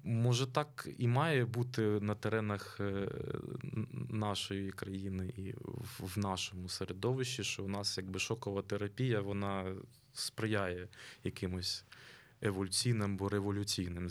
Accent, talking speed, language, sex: native, 105 wpm, Ukrainian, male